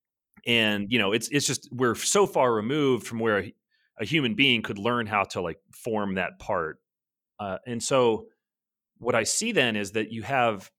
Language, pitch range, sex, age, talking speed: English, 105-140 Hz, male, 30-49, 195 wpm